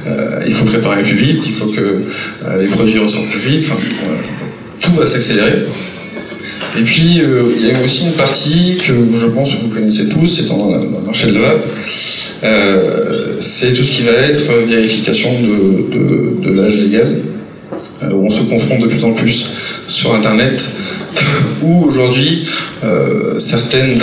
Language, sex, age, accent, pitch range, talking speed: French, male, 20-39, French, 110-135 Hz, 170 wpm